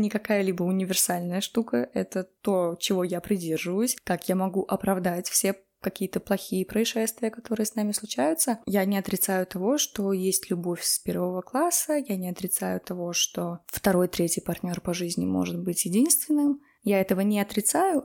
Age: 20-39